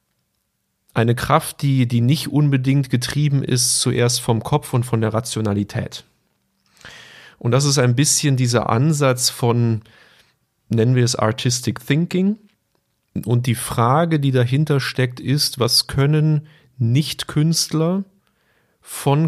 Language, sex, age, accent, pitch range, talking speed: German, male, 40-59, German, 110-140 Hz, 120 wpm